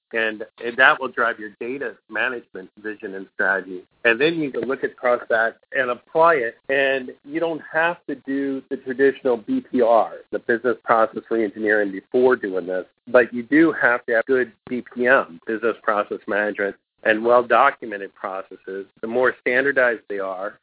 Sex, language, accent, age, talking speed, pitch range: male, English, American, 50-69, 165 wpm, 110-135 Hz